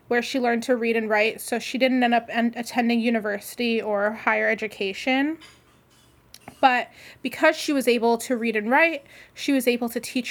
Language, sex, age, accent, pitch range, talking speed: English, female, 20-39, American, 225-260 Hz, 185 wpm